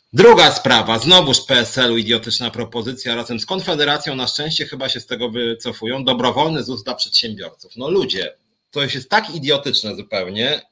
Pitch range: 120-170 Hz